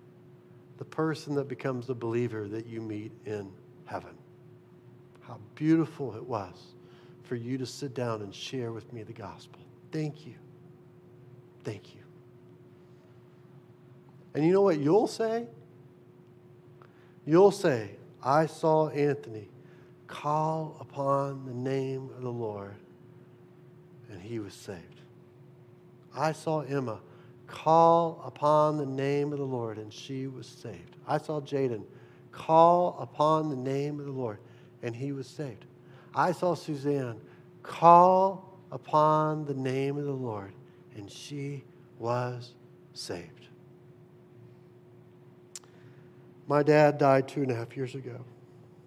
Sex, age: male, 50-69